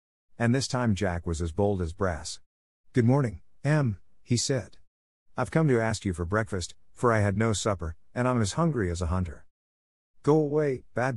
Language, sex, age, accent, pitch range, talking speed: English, male, 50-69, American, 85-125 Hz, 195 wpm